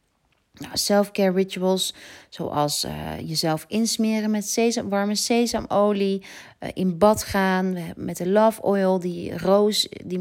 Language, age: Dutch, 40-59